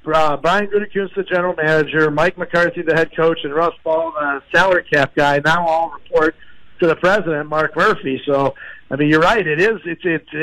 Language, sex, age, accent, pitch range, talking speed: English, male, 50-69, American, 150-175 Hz, 200 wpm